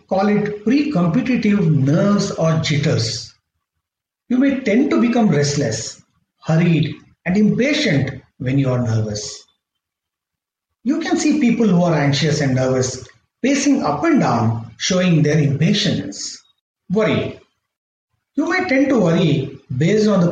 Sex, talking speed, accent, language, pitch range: male, 130 wpm, Indian, English, 130-210 Hz